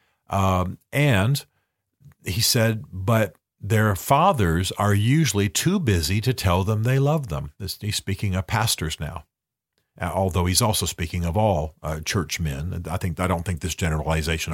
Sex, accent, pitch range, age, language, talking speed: male, American, 90-115 Hz, 50-69, English, 155 wpm